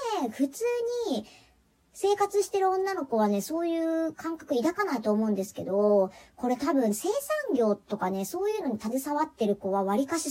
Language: Japanese